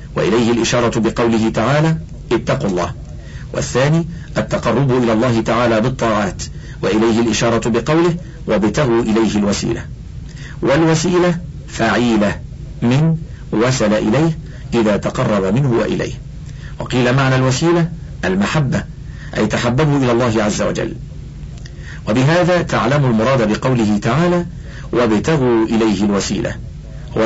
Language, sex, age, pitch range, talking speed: Arabic, male, 50-69, 110-145 Hz, 100 wpm